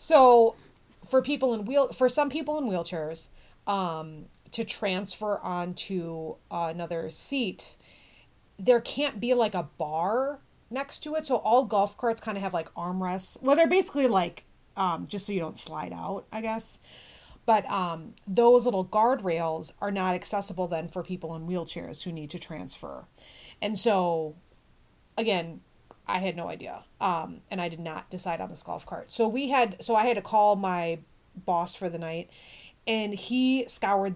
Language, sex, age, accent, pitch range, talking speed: English, female, 30-49, American, 170-225 Hz, 170 wpm